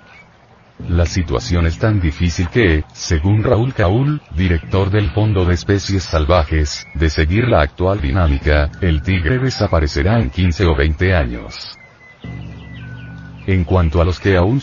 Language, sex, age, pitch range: Spanish, male, 40-59, 80-105 Hz